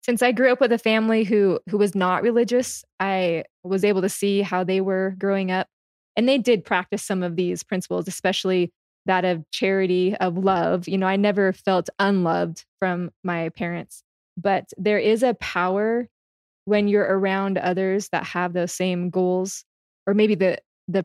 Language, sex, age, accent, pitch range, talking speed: English, female, 20-39, American, 185-210 Hz, 180 wpm